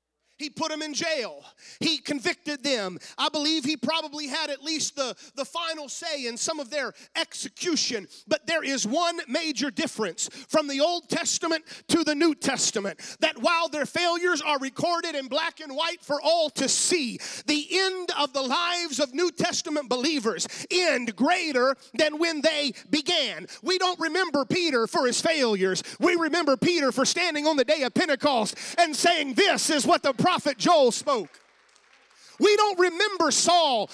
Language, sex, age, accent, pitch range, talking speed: English, male, 40-59, American, 275-340 Hz, 170 wpm